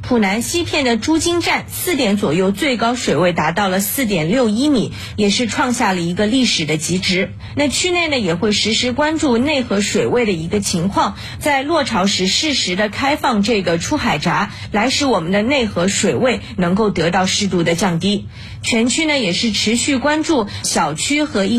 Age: 30-49